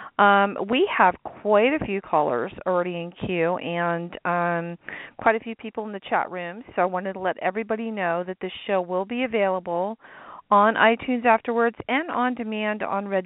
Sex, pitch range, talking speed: female, 180-220 Hz, 185 wpm